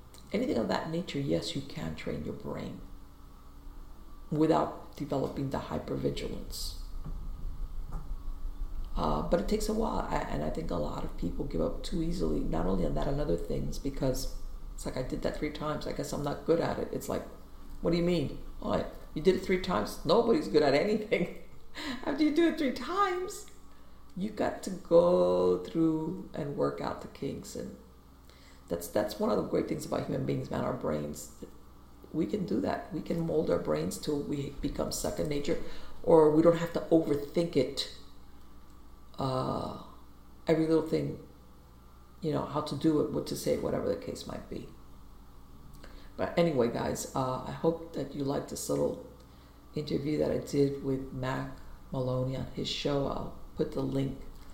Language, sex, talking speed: English, female, 180 wpm